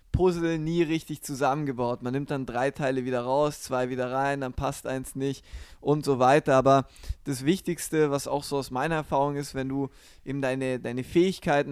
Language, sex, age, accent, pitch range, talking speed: German, male, 20-39, German, 130-145 Hz, 190 wpm